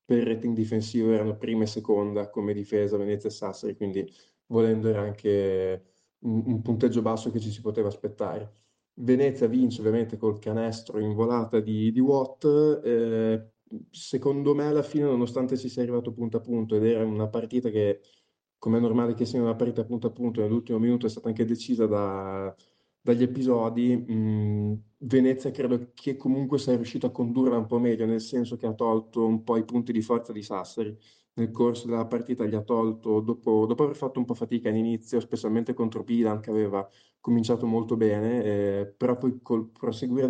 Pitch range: 110-120 Hz